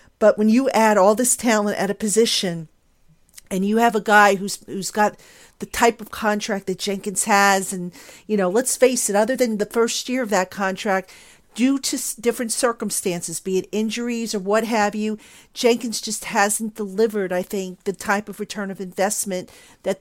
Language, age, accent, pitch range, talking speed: English, 50-69, American, 190-230 Hz, 190 wpm